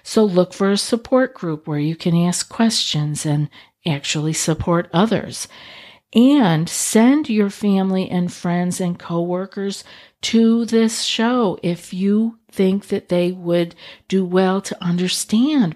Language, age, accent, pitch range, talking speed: English, 50-69, American, 170-205 Hz, 135 wpm